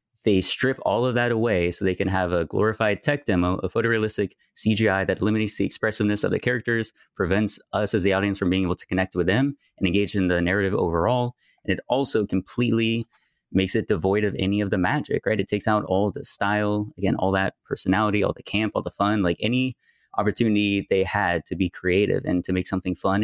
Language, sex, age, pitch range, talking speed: English, male, 20-39, 95-105 Hz, 215 wpm